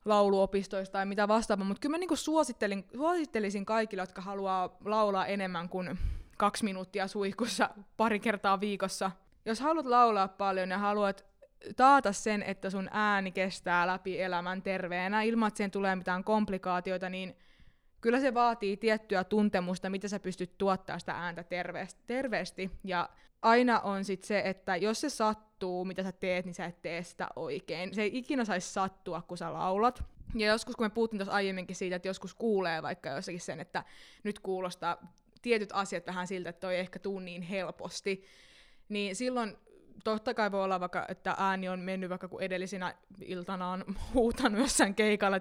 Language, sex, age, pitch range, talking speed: Finnish, female, 20-39, 185-215 Hz, 170 wpm